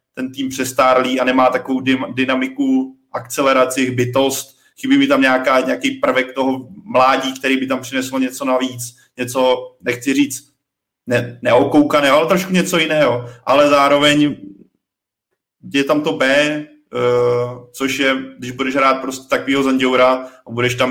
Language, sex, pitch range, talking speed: Czech, male, 125-135 Hz, 140 wpm